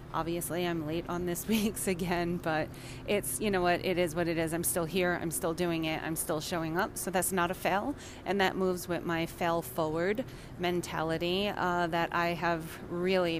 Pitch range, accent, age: 165-190 Hz, American, 30-49